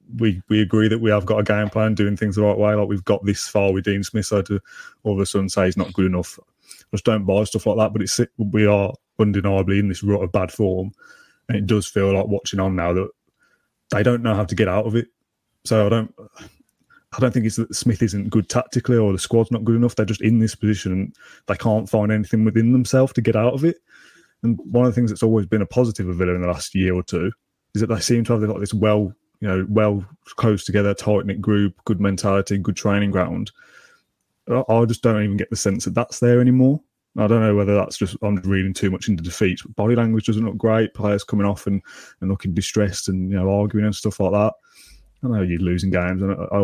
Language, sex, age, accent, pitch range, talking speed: English, male, 20-39, British, 95-110 Hz, 250 wpm